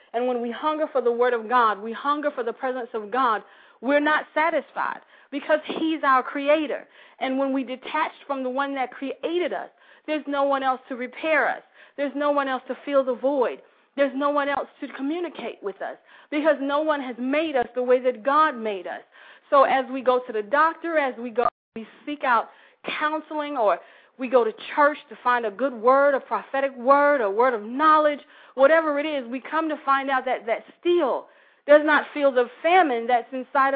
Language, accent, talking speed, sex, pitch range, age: English, American, 210 wpm, female, 245-295 Hz, 40-59